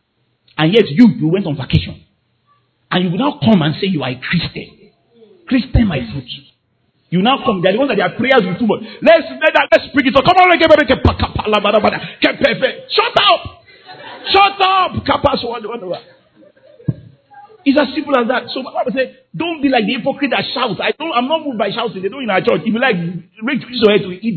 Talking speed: 205 wpm